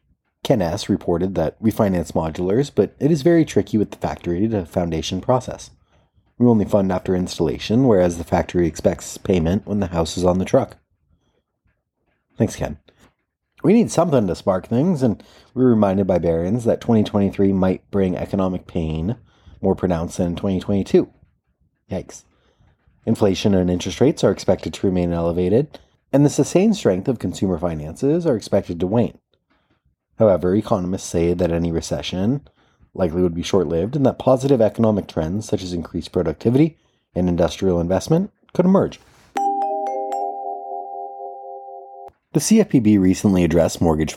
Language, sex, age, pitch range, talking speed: English, male, 30-49, 85-110 Hz, 150 wpm